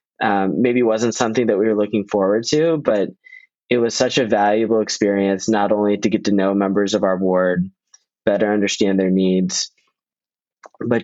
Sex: male